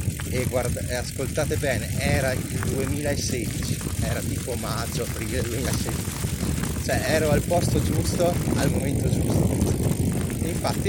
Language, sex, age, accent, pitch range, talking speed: Italian, male, 30-49, native, 95-120 Hz, 125 wpm